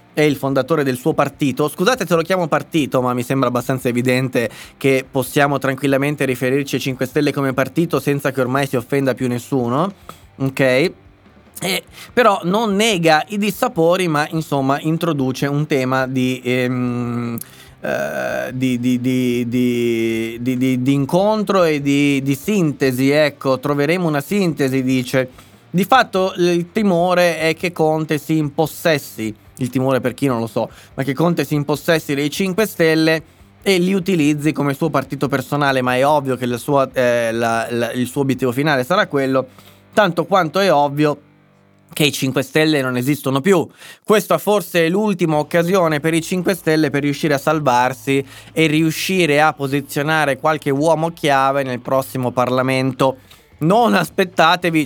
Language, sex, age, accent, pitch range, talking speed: Italian, male, 20-39, native, 130-160 Hz, 150 wpm